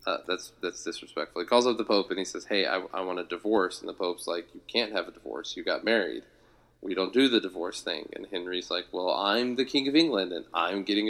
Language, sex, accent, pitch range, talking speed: English, male, American, 95-110 Hz, 260 wpm